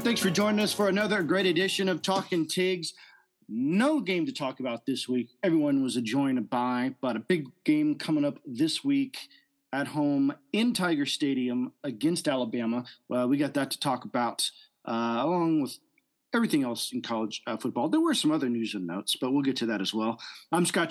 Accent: American